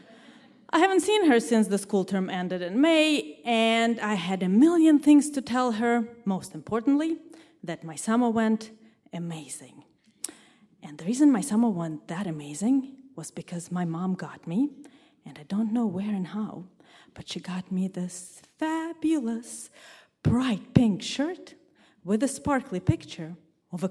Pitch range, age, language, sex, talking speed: 175-260 Hz, 30-49, English, female, 160 wpm